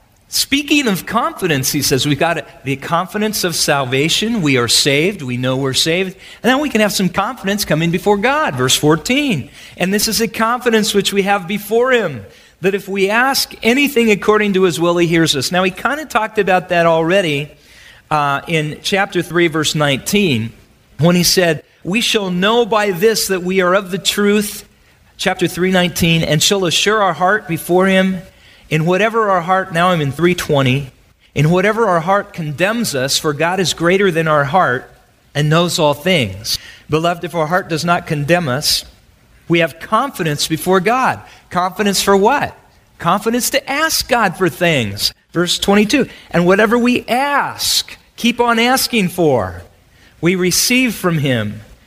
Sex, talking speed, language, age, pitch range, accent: male, 175 wpm, English, 40-59, 150-210 Hz, American